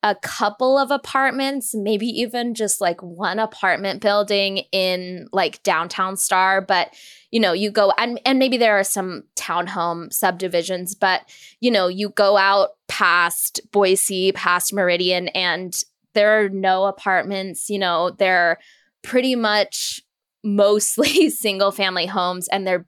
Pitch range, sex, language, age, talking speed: 180-210 Hz, female, English, 10-29, 140 wpm